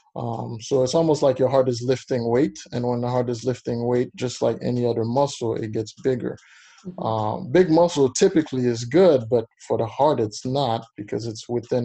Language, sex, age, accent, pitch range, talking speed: English, male, 20-39, American, 115-130 Hz, 205 wpm